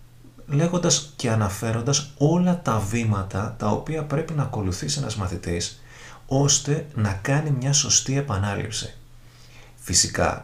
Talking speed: 115 wpm